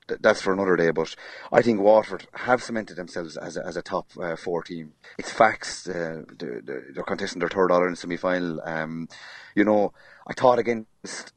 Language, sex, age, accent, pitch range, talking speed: English, male, 30-49, Irish, 90-110 Hz, 195 wpm